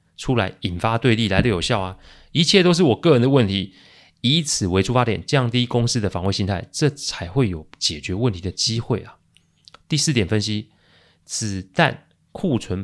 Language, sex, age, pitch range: Chinese, male, 30-49, 95-135 Hz